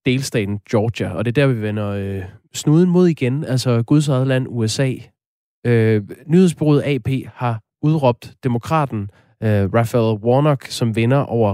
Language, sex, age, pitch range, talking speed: Danish, male, 20-39, 105-140 Hz, 135 wpm